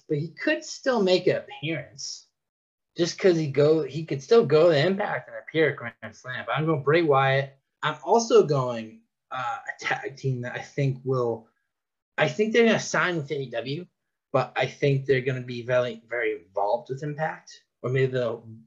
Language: English